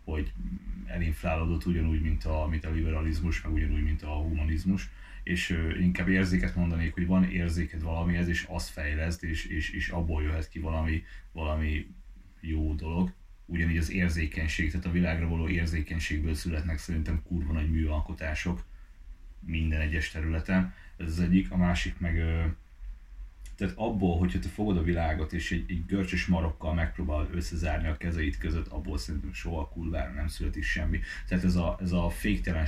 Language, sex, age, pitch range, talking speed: Hungarian, male, 30-49, 80-95 Hz, 160 wpm